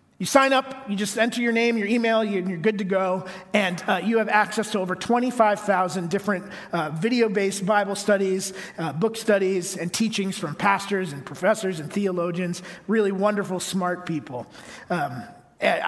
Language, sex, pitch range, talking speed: English, male, 175-215 Hz, 165 wpm